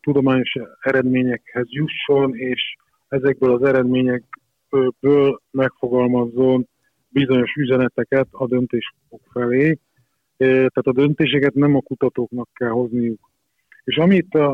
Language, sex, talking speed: Hungarian, male, 95 wpm